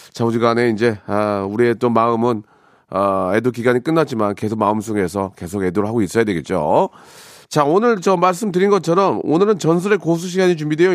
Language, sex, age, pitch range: Korean, male, 40-59, 130-200 Hz